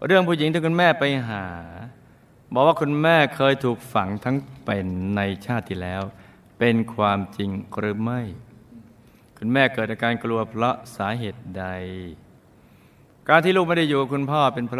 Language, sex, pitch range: Thai, male, 100-135 Hz